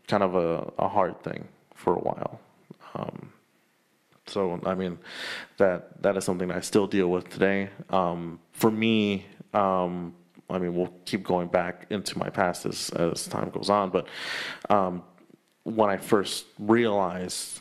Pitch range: 90-100 Hz